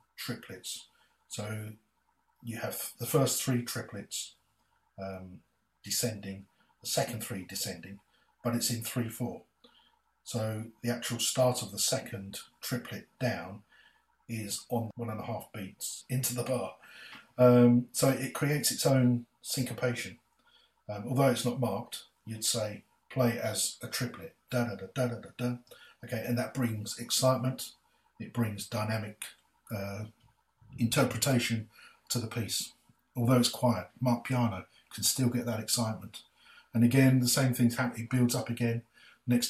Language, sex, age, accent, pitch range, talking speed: English, male, 40-59, British, 110-125 Hz, 135 wpm